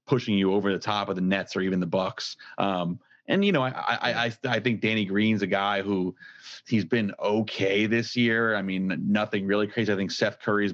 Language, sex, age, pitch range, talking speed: English, male, 30-49, 100-110 Hz, 230 wpm